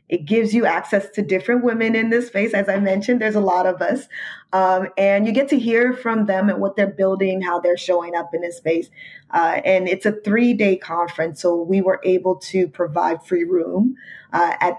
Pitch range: 175-220 Hz